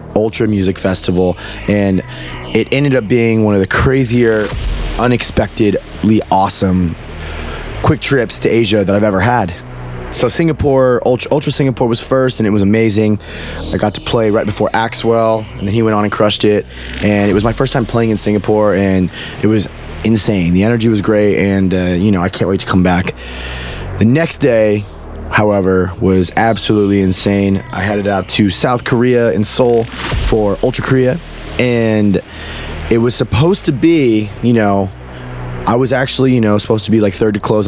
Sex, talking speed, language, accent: male, 180 wpm, English, American